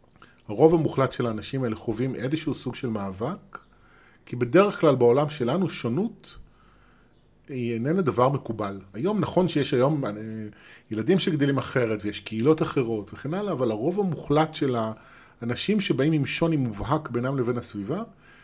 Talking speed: 145 wpm